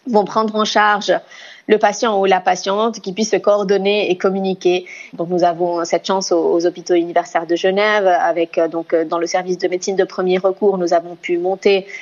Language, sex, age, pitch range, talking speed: French, female, 30-49, 180-210 Hz, 200 wpm